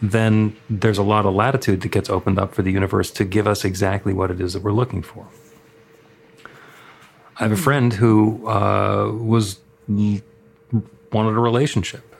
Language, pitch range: English, 100-120 Hz